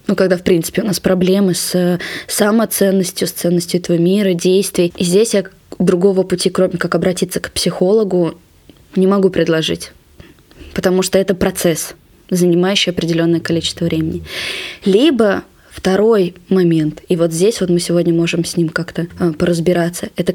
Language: Russian